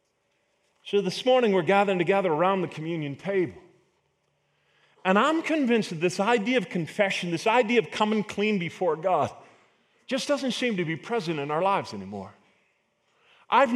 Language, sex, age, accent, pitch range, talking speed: English, male, 40-59, American, 170-230 Hz, 155 wpm